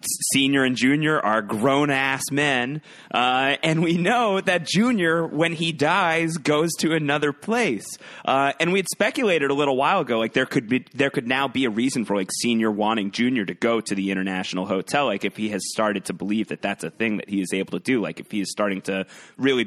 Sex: male